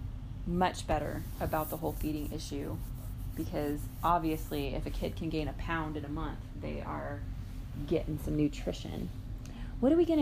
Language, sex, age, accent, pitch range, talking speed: English, female, 20-39, American, 115-190 Hz, 165 wpm